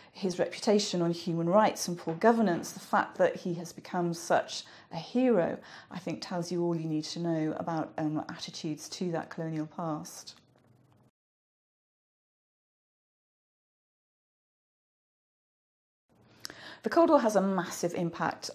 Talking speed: 130 wpm